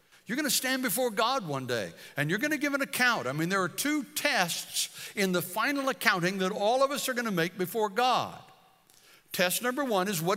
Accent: American